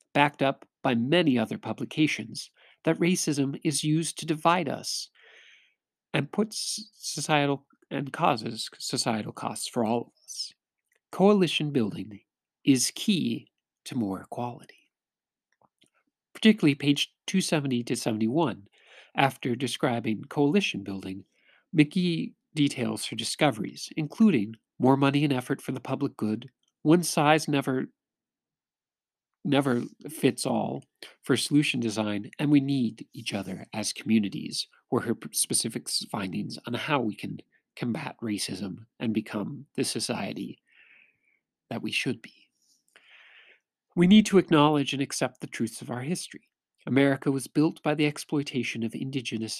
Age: 50-69